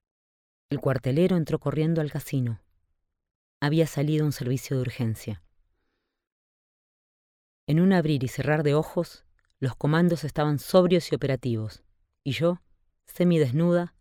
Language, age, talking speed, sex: Spanish, 20-39, 120 wpm, female